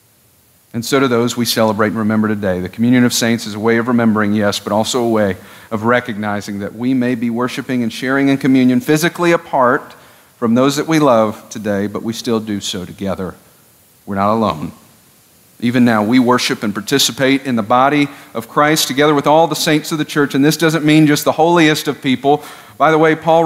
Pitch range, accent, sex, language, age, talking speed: 110-150 Hz, American, male, English, 50-69, 210 wpm